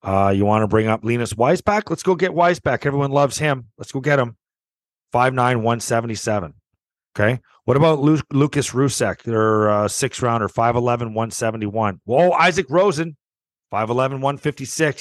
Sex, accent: male, American